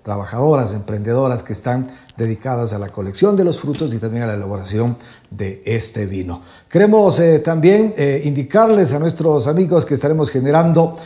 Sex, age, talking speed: male, 50-69, 165 wpm